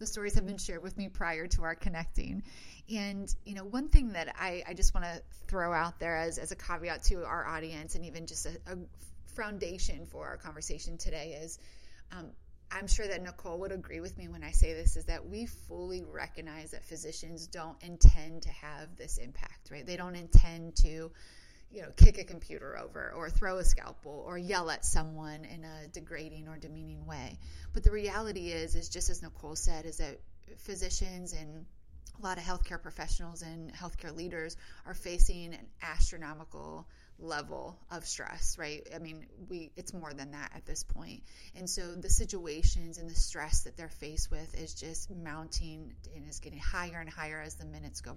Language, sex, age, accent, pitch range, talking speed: English, female, 30-49, American, 130-180 Hz, 195 wpm